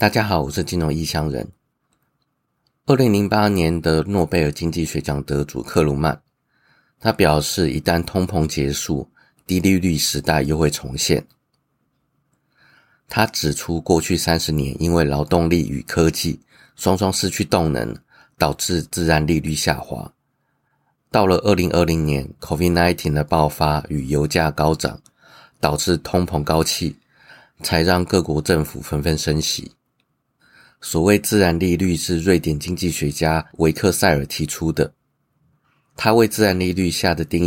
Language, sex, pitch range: Chinese, male, 75-90 Hz